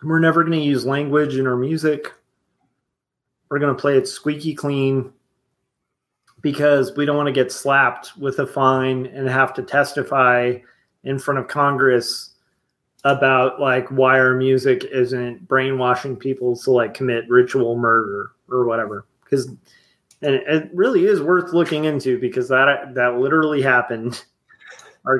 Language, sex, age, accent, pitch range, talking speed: English, male, 30-49, American, 125-145 Hz, 150 wpm